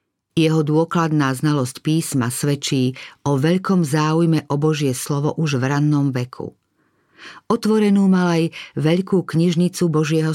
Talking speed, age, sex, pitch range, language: 120 wpm, 50-69, female, 140-175 Hz, Slovak